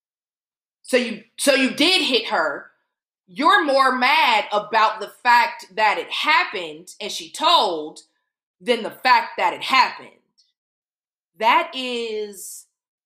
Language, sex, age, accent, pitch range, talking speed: English, female, 20-39, American, 210-295 Hz, 125 wpm